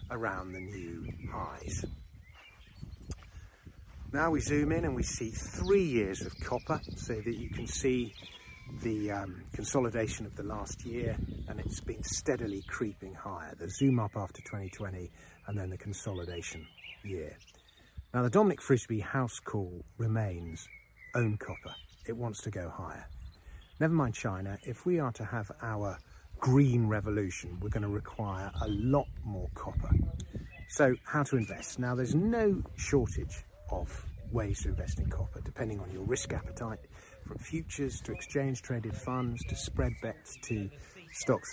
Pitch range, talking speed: 90-120 Hz, 155 wpm